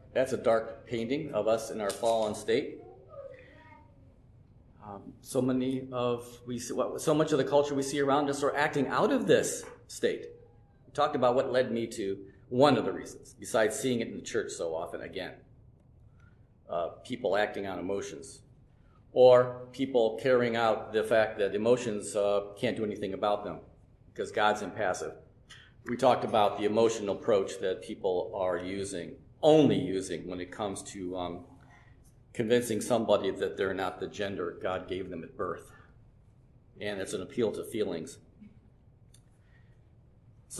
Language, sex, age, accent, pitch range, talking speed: English, male, 50-69, American, 110-130 Hz, 165 wpm